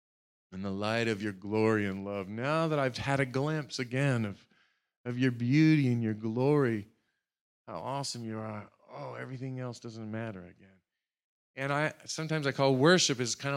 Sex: male